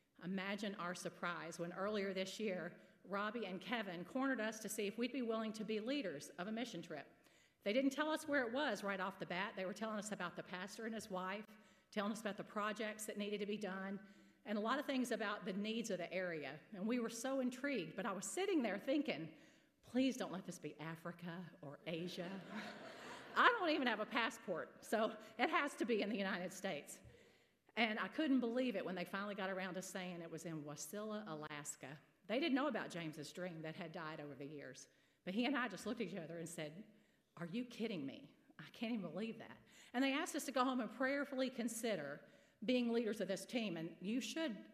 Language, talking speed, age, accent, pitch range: English, 225 wpm, 40-59, American, 180-235 Hz